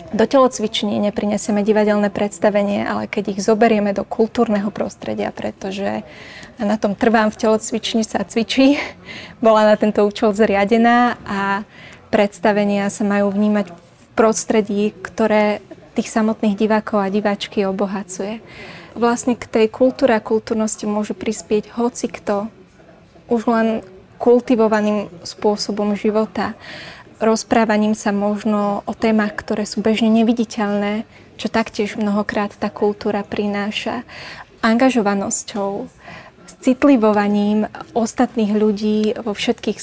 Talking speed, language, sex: 115 wpm, Slovak, female